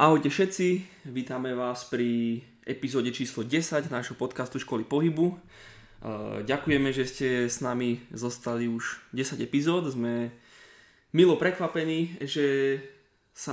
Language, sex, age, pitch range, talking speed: Slovak, male, 20-39, 120-140 Hz, 115 wpm